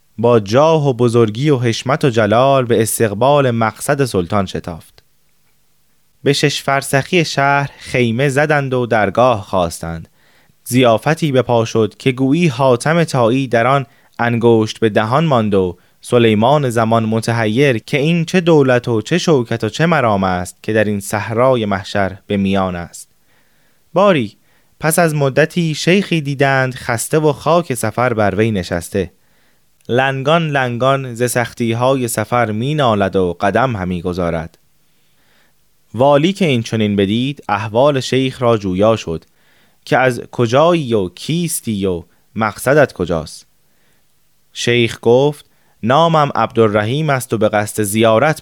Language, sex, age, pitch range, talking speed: Persian, male, 20-39, 110-140 Hz, 135 wpm